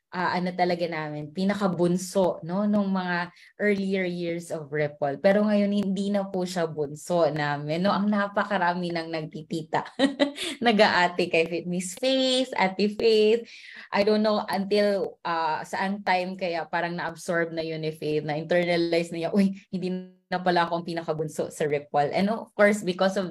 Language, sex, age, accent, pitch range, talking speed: English, female, 20-39, Filipino, 160-195 Hz, 165 wpm